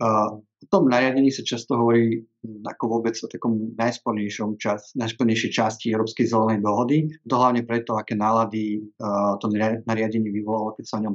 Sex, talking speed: male, 155 wpm